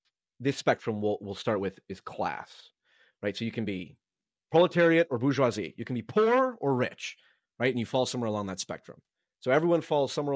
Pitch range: 100-130 Hz